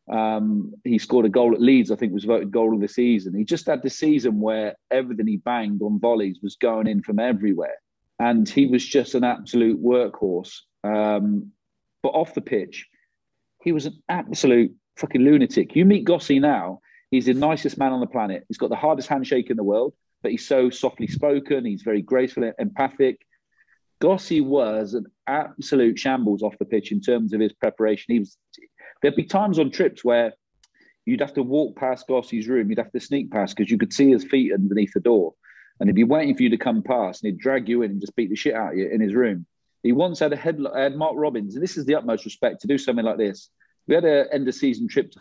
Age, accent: 40-59, British